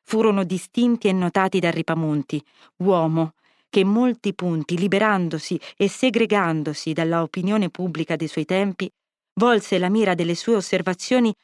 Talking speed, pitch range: 135 wpm, 170-220 Hz